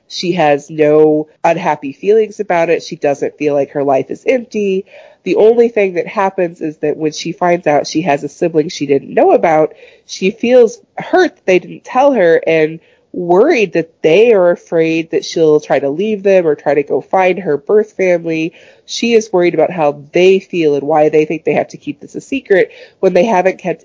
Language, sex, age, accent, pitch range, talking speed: English, female, 30-49, American, 150-200 Hz, 210 wpm